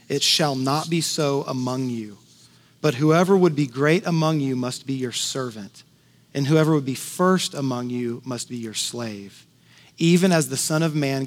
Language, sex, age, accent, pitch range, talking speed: English, male, 30-49, American, 115-160 Hz, 185 wpm